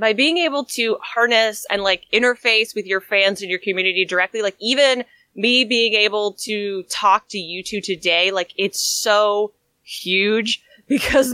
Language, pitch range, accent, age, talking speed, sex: English, 185-230 Hz, American, 20-39, 165 wpm, female